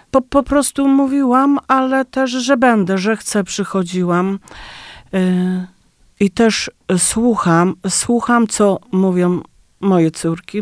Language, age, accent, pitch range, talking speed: Polish, 40-59, native, 180-220 Hz, 105 wpm